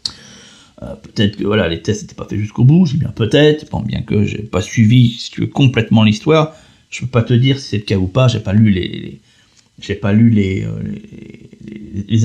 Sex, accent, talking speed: male, French, 210 wpm